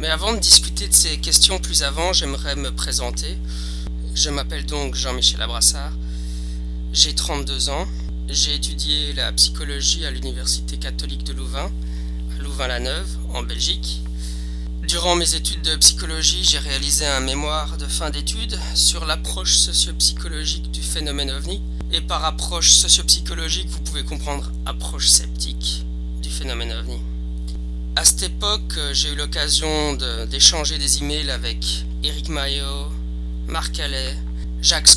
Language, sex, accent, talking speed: French, male, French, 135 wpm